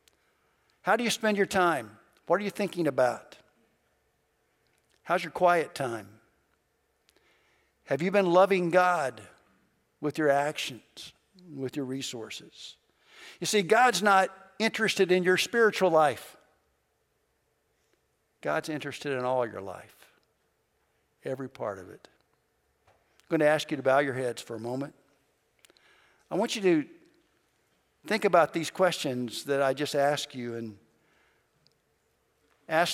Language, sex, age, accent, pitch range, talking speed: English, male, 60-79, American, 135-180 Hz, 130 wpm